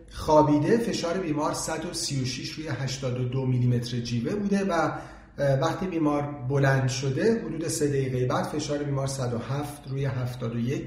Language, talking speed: Persian, 125 wpm